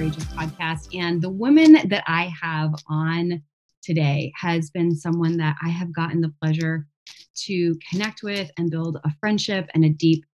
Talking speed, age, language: 160 wpm, 20-39, English